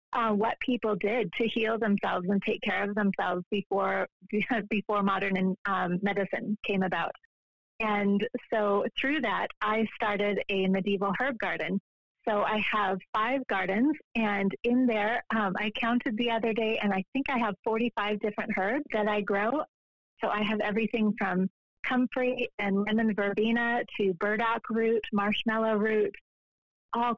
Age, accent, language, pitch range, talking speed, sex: 30-49, American, English, 200-230 Hz, 150 wpm, female